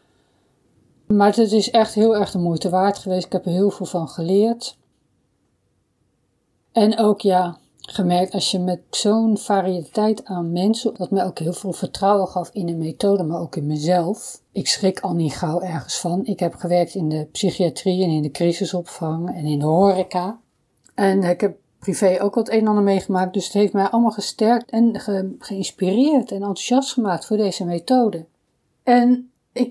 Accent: Dutch